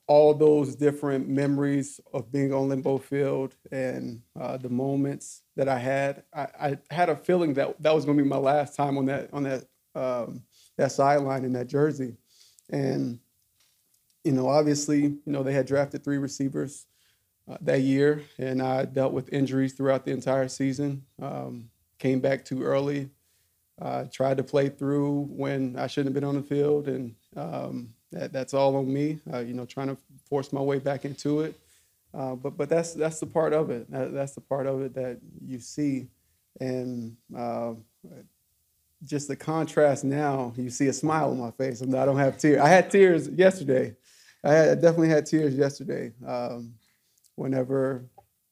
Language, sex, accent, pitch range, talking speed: English, male, American, 130-145 Hz, 180 wpm